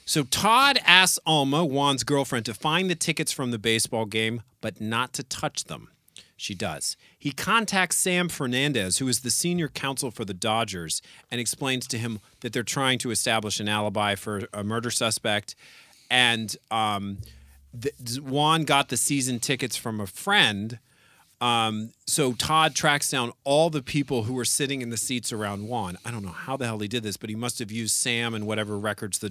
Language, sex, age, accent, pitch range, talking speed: English, male, 40-59, American, 105-140 Hz, 190 wpm